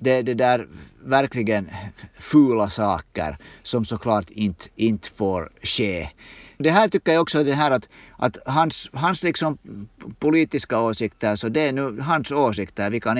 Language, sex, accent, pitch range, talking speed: Swedish, male, Finnish, 100-130 Hz, 155 wpm